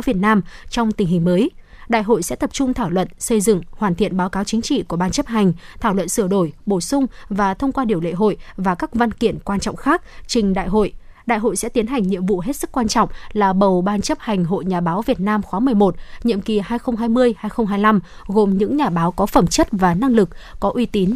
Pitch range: 190-240 Hz